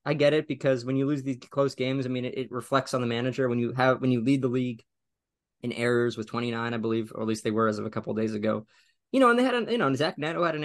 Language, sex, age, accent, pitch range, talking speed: English, male, 20-39, American, 110-135 Hz, 315 wpm